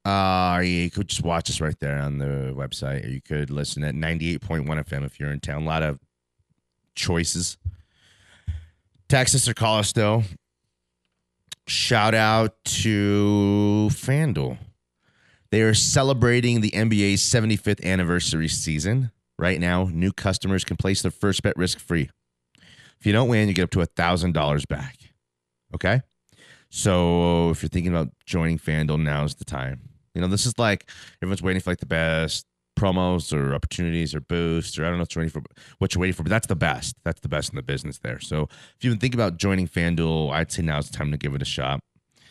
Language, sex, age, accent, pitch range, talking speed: English, male, 30-49, American, 80-105 Hz, 185 wpm